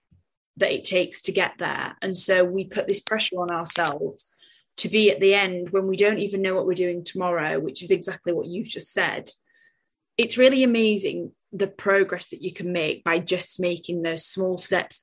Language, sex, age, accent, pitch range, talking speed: English, female, 10-29, British, 170-195 Hz, 200 wpm